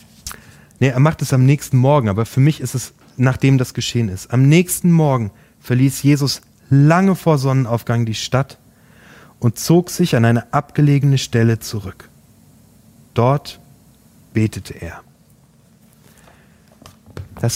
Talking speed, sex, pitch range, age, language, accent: 130 wpm, male, 110-140 Hz, 30-49, German, German